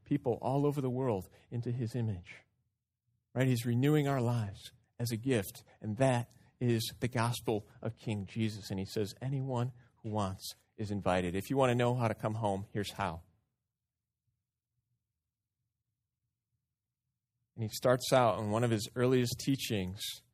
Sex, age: male, 30-49